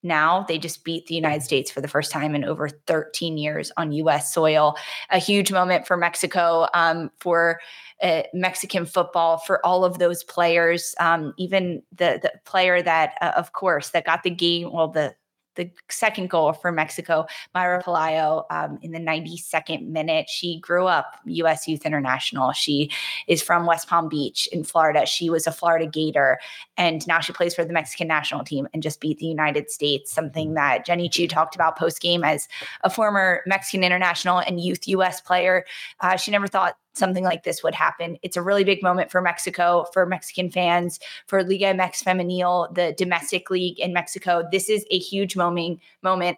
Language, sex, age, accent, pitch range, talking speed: English, female, 20-39, American, 160-185 Hz, 185 wpm